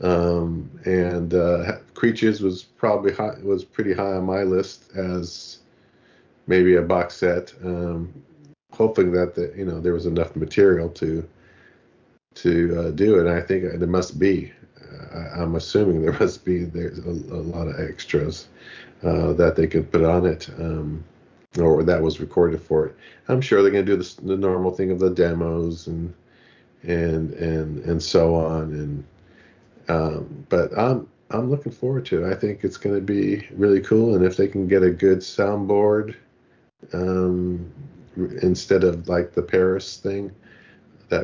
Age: 40-59